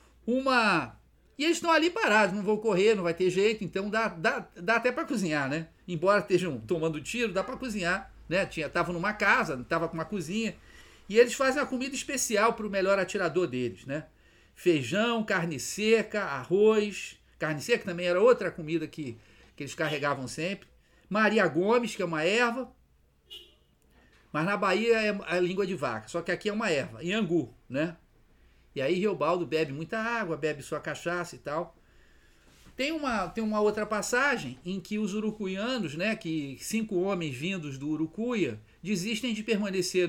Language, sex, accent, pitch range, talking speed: Portuguese, male, Brazilian, 160-215 Hz, 175 wpm